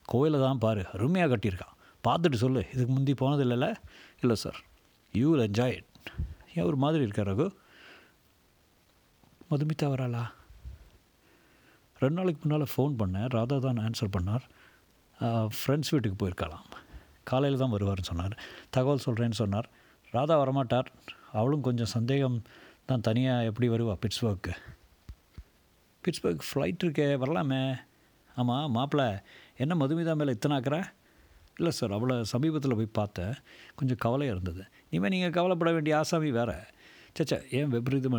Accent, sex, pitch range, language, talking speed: native, male, 110-145 Hz, Tamil, 125 wpm